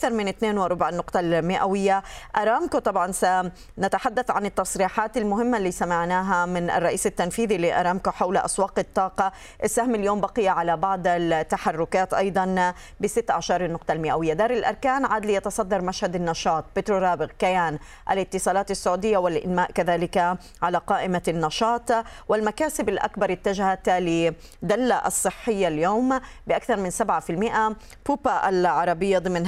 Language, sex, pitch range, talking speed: Arabic, female, 175-210 Hz, 120 wpm